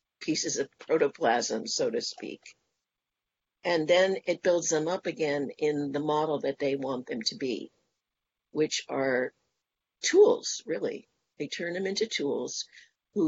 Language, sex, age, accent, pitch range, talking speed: English, female, 60-79, American, 145-190 Hz, 145 wpm